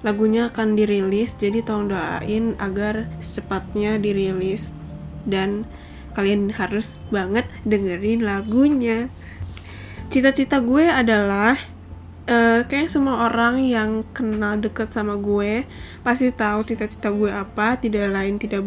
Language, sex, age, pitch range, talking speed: Indonesian, female, 10-29, 205-235 Hz, 115 wpm